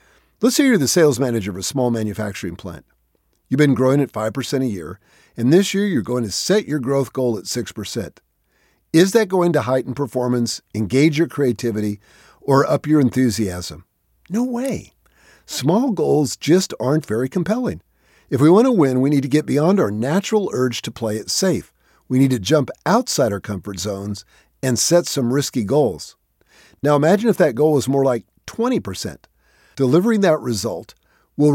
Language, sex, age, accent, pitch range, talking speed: English, male, 50-69, American, 110-160 Hz, 180 wpm